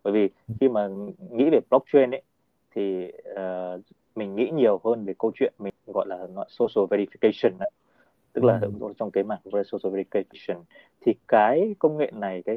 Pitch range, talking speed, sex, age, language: 95-120 Hz, 180 wpm, male, 20-39, Vietnamese